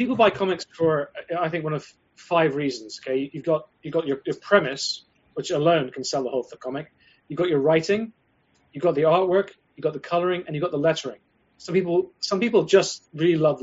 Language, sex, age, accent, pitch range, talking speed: English, male, 30-49, British, 140-185 Hz, 220 wpm